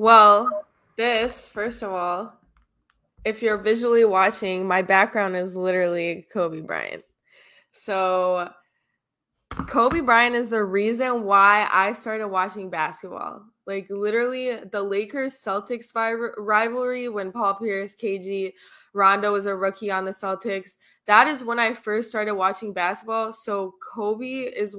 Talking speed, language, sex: 130 wpm, English, female